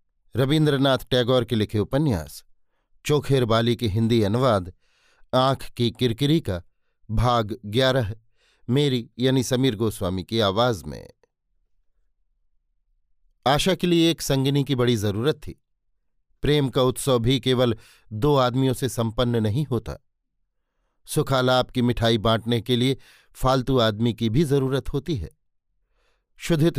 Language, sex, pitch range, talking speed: Hindi, male, 115-140 Hz, 130 wpm